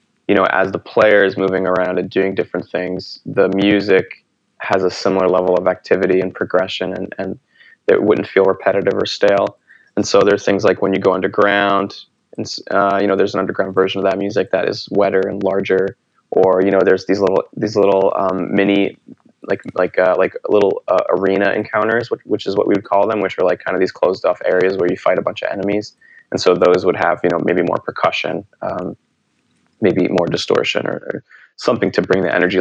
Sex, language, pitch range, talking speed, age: male, English, 95-110 Hz, 215 wpm, 20-39